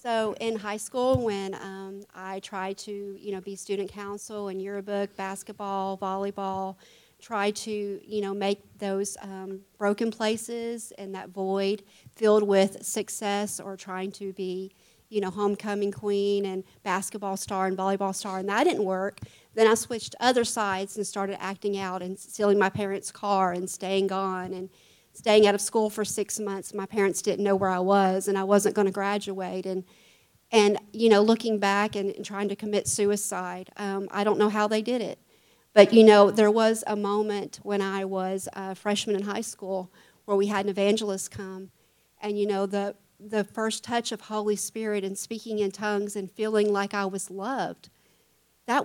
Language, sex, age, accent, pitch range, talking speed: English, female, 40-59, American, 195-215 Hz, 185 wpm